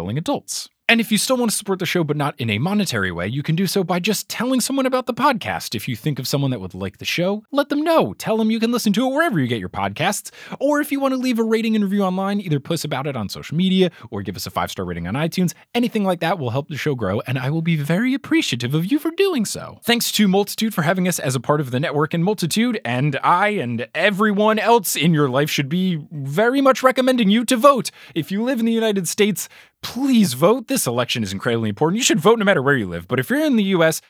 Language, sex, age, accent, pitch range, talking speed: English, male, 20-39, American, 140-220 Hz, 275 wpm